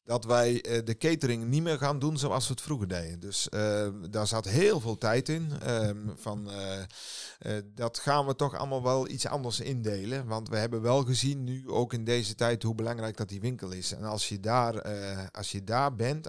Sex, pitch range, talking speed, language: male, 100-120 Hz, 215 wpm, Dutch